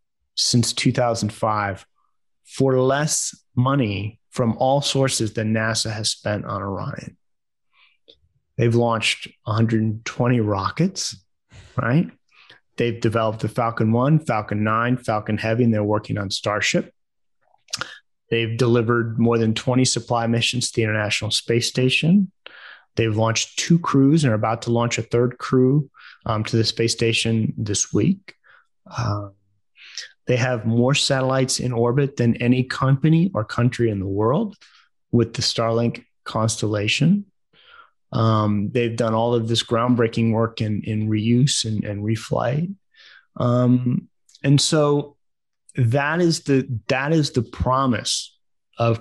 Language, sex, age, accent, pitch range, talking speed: English, male, 30-49, American, 110-130 Hz, 130 wpm